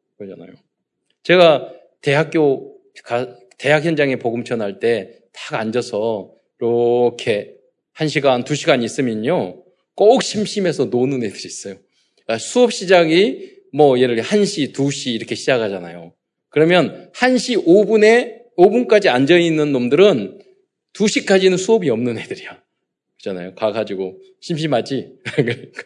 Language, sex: Korean, male